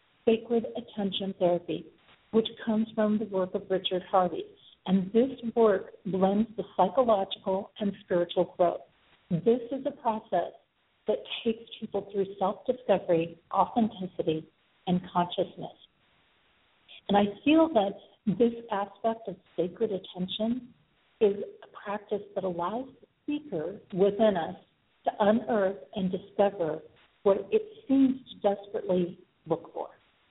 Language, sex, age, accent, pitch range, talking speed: English, female, 50-69, American, 185-225 Hz, 120 wpm